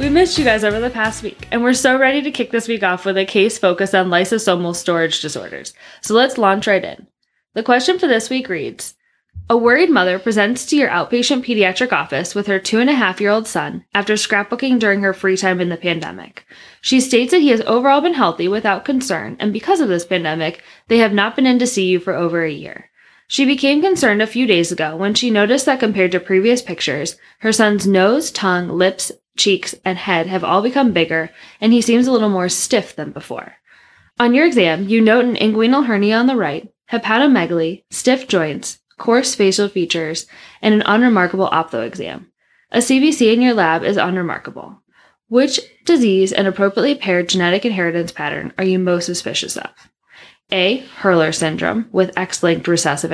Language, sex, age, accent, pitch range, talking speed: English, female, 10-29, American, 180-240 Hz, 190 wpm